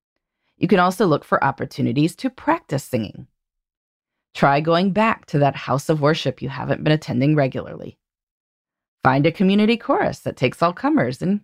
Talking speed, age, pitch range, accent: 165 wpm, 30-49, 135-205 Hz, American